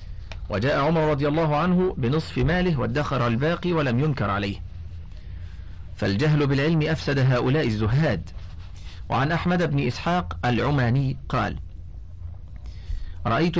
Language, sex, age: Arabic, male, 50-69